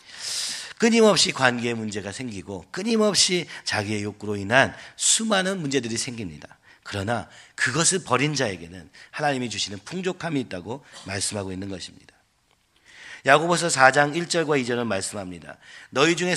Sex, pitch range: male, 105-165 Hz